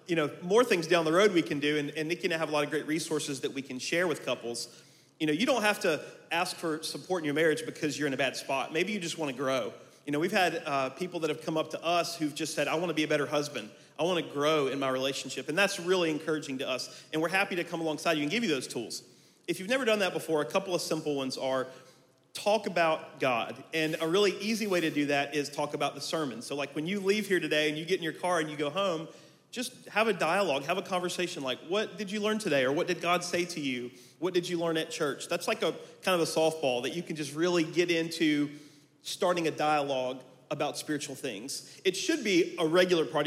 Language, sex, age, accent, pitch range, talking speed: English, male, 40-59, American, 145-180 Hz, 270 wpm